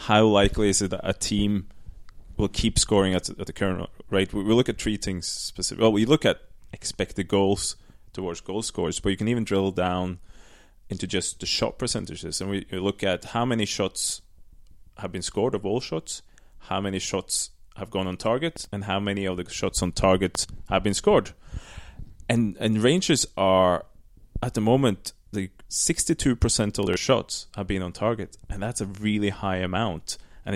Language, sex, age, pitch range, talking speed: English, male, 20-39, 95-115 Hz, 180 wpm